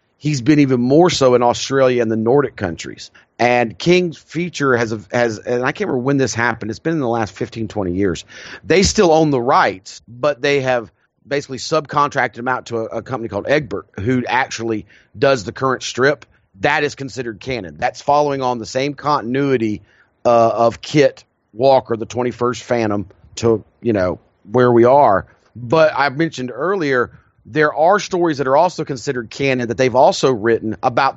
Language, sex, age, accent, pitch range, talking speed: English, male, 30-49, American, 110-135 Hz, 185 wpm